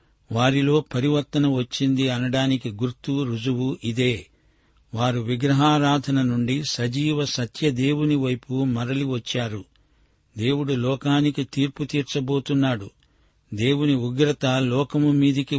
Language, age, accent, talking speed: Telugu, 50-69, native, 85 wpm